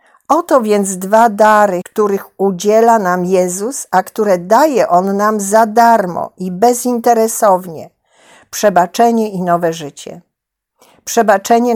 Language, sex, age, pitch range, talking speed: Polish, female, 50-69, 190-235 Hz, 110 wpm